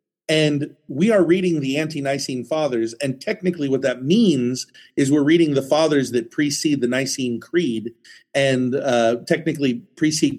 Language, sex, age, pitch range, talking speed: English, male, 40-59, 135-175 Hz, 150 wpm